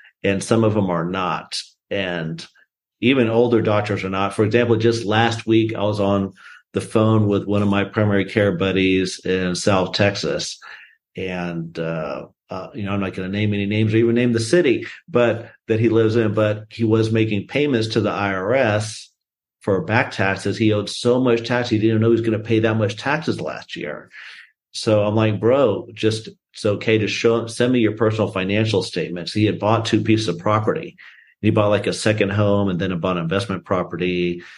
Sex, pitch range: male, 100-115 Hz